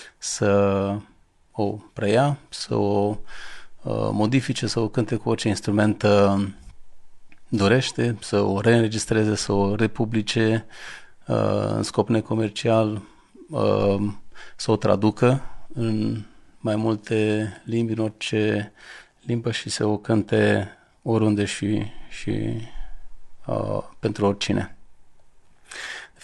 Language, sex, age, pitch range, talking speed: Romanian, male, 40-59, 105-115 Hz, 95 wpm